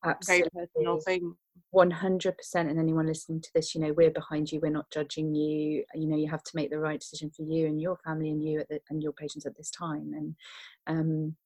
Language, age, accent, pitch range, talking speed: English, 30-49, British, 155-180 Hz, 220 wpm